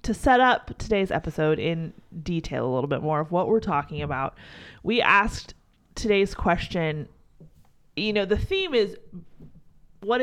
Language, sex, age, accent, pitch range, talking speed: English, female, 30-49, American, 175-225 Hz, 155 wpm